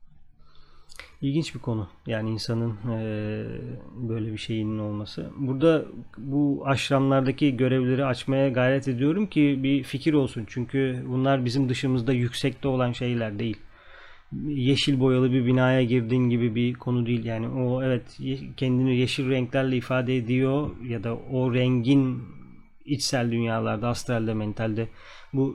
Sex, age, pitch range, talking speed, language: male, 30-49, 115-135 Hz, 125 wpm, Turkish